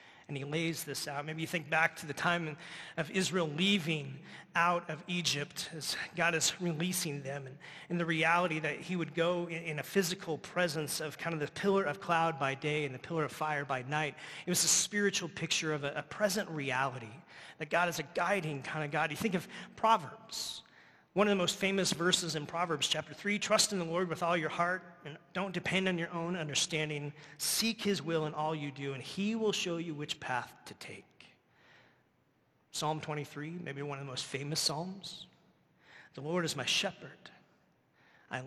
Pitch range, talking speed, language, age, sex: 150-175 Hz, 205 wpm, English, 30-49, male